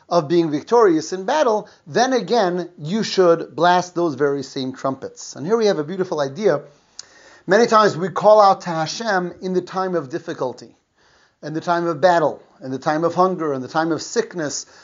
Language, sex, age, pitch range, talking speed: English, male, 30-49, 145-185 Hz, 195 wpm